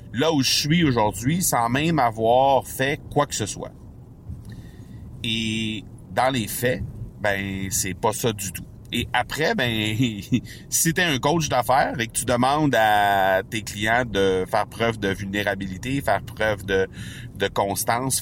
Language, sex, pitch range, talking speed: French, male, 100-120 Hz, 160 wpm